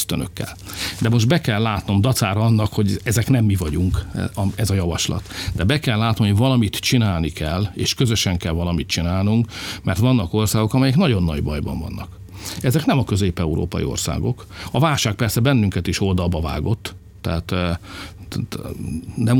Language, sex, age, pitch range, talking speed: Hungarian, male, 50-69, 95-115 Hz, 155 wpm